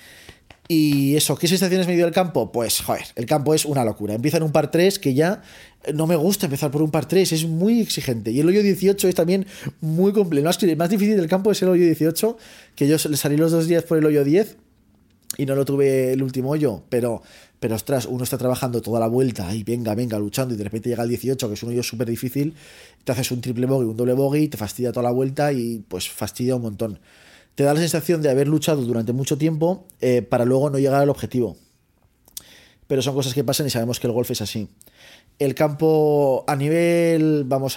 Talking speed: 230 wpm